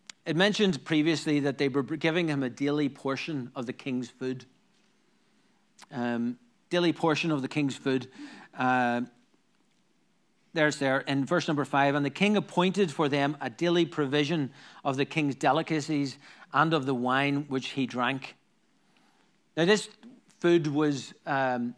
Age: 40-59